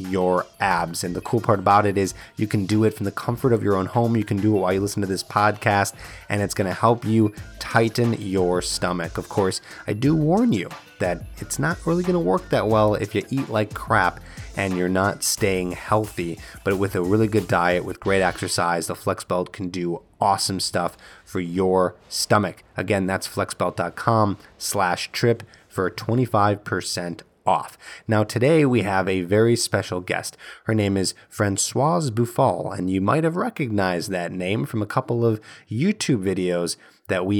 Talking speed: 190 wpm